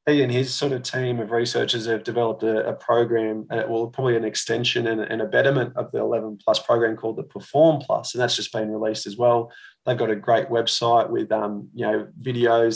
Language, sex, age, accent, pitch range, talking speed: English, male, 20-39, Australian, 110-120 Hz, 220 wpm